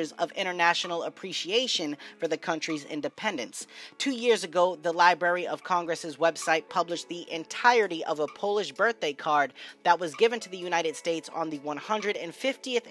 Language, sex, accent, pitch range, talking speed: English, female, American, 165-205 Hz, 155 wpm